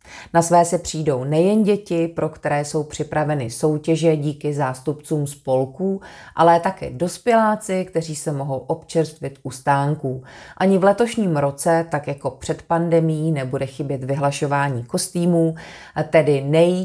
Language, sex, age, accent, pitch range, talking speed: Czech, female, 30-49, native, 140-165 Hz, 130 wpm